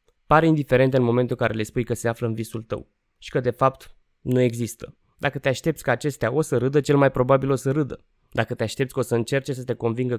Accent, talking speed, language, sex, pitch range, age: native, 260 wpm, Romanian, male, 120-145 Hz, 20-39